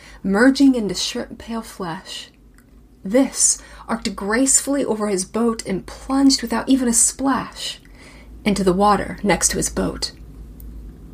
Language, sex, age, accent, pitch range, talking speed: English, female, 30-49, American, 175-225 Hz, 135 wpm